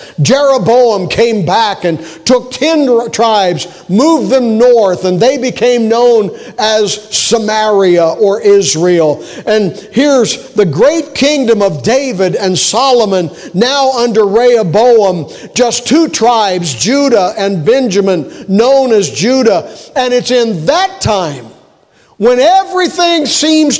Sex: male